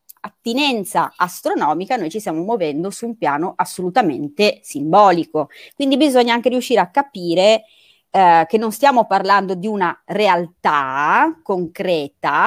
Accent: native